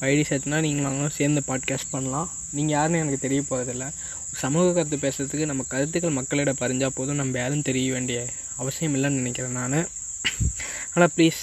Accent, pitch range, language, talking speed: native, 130-155 Hz, Tamil, 155 wpm